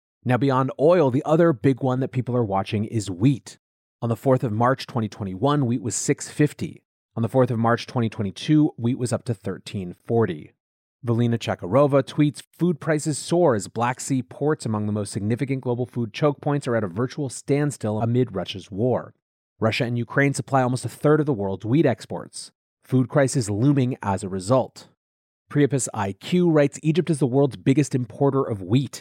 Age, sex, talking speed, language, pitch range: 30-49, male, 190 wpm, English, 110-140 Hz